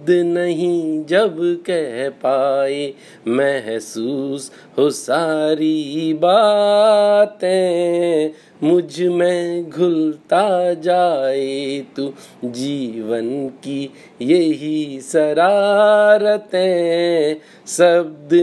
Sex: male